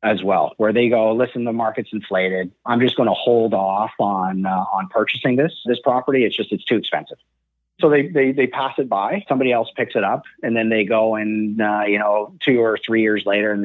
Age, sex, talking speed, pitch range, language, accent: 30-49, male, 235 wpm, 100-120 Hz, English, American